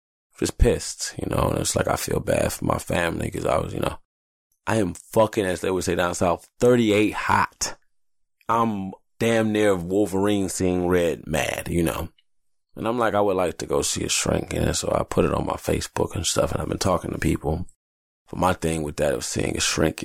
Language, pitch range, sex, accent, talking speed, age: English, 75-95 Hz, male, American, 220 wpm, 20-39